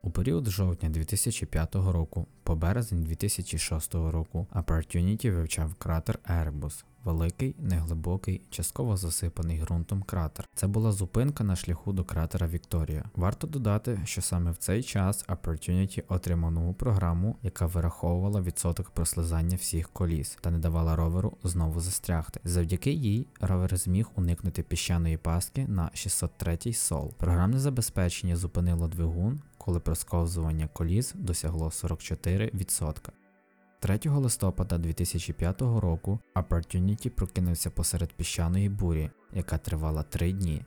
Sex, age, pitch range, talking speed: male, 20-39, 85-100 Hz, 120 wpm